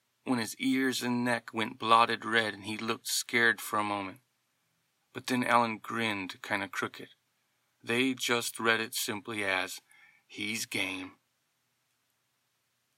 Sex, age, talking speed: male, 40-59, 140 wpm